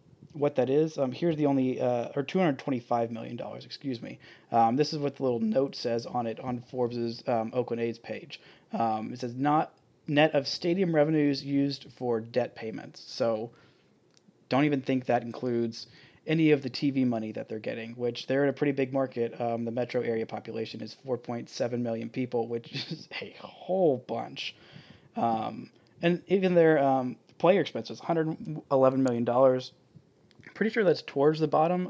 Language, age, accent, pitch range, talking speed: English, 20-39, American, 120-150 Hz, 165 wpm